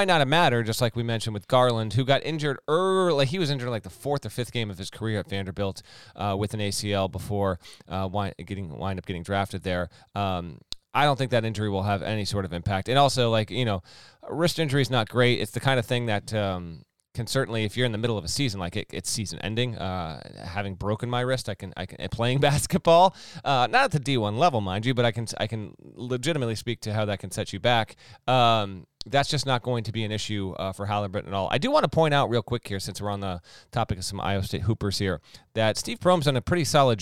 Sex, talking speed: male, 260 wpm